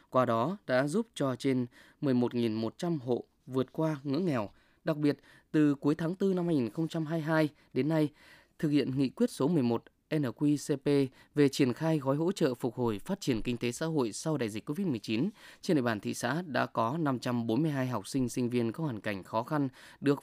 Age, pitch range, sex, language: 20-39, 120-155 Hz, male, Vietnamese